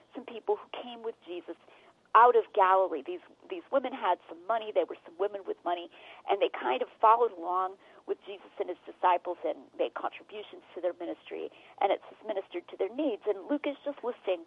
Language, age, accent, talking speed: English, 40-59, American, 205 wpm